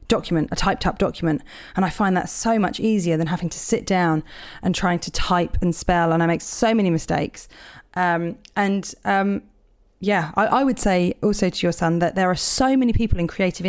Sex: female